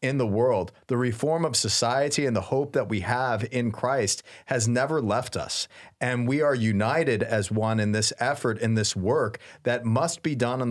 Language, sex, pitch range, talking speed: English, male, 110-130 Hz, 200 wpm